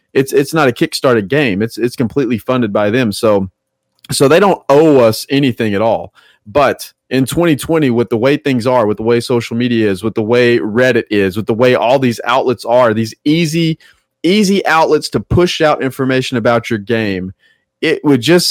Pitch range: 115-145 Hz